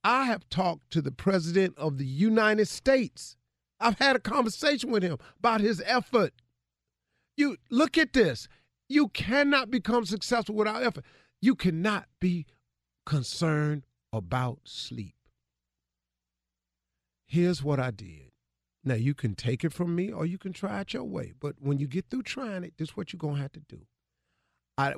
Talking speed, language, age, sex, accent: 170 wpm, English, 50-69, male, American